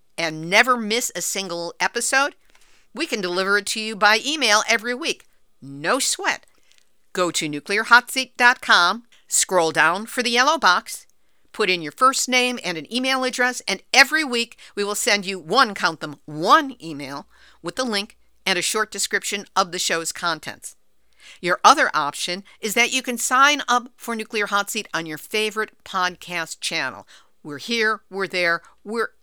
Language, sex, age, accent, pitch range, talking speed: English, female, 50-69, American, 175-240 Hz, 170 wpm